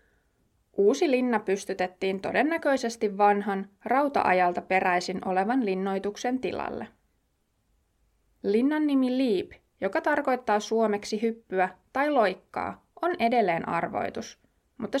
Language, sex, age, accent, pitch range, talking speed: Finnish, female, 20-39, native, 190-255 Hz, 90 wpm